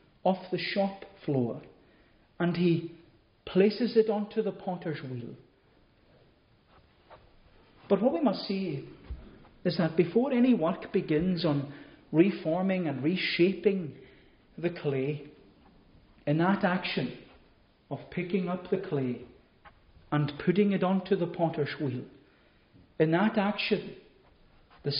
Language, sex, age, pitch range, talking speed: English, male, 40-59, 145-195 Hz, 115 wpm